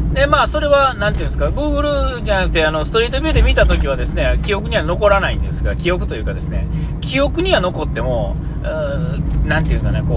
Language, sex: Japanese, male